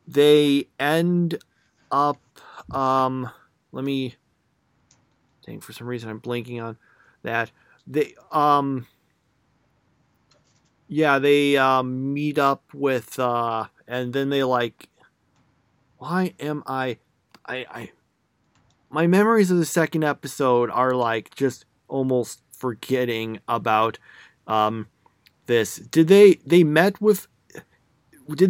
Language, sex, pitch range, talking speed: English, male, 125-170 Hz, 110 wpm